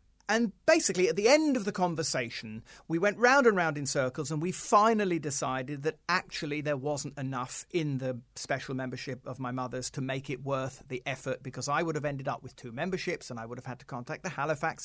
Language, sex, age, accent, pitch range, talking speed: English, male, 40-59, British, 135-180 Hz, 220 wpm